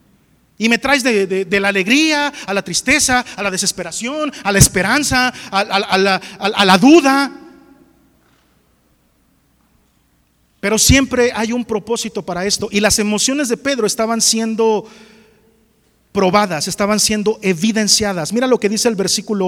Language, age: Spanish, 40-59